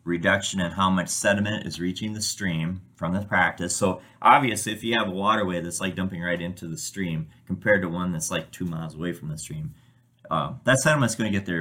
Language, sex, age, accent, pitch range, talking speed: English, male, 30-49, American, 80-105 Hz, 225 wpm